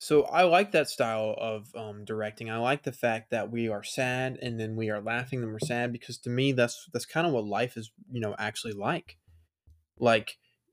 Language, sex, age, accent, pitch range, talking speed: English, male, 20-39, American, 115-135 Hz, 220 wpm